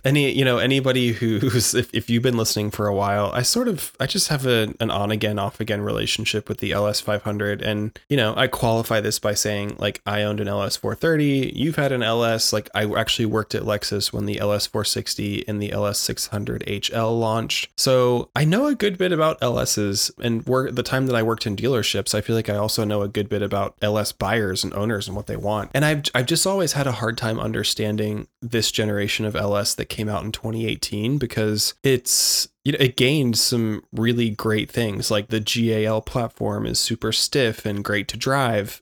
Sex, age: male, 20-39